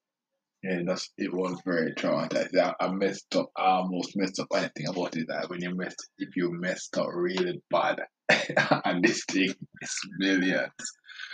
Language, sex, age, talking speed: English, male, 20-39, 165 wpm